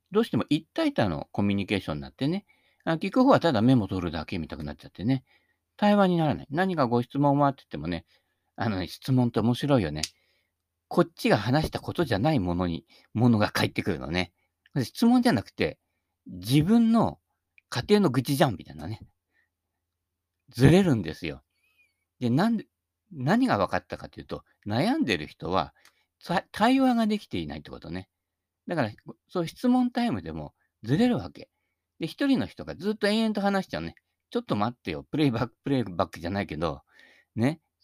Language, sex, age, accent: Japanese, male, 50-69, native